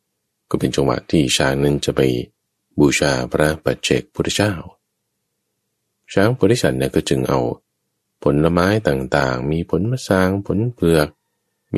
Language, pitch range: Thai, 70-90 Hz